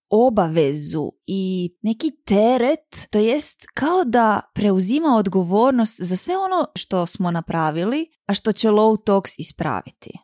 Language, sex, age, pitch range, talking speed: Croatian, female, 20-39, 175-215 Hz, 130 wpm